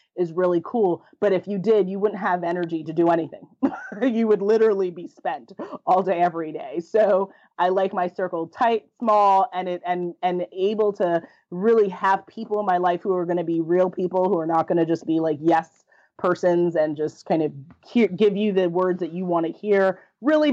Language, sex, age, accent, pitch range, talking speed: English, female, 30-49, American, 180-220 Hz, 215 wpm